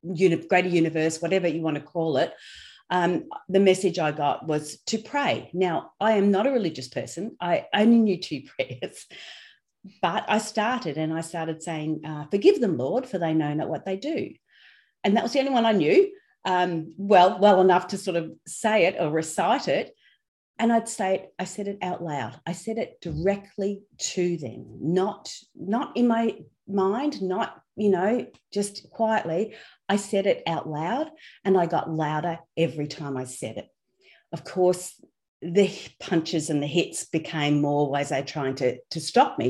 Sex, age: female, 40-59